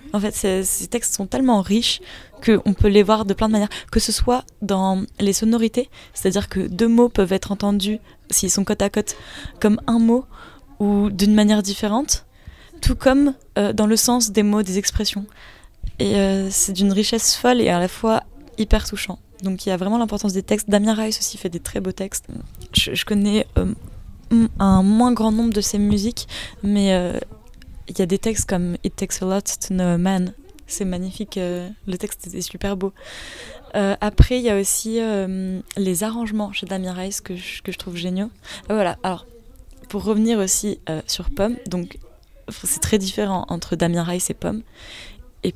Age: 20-39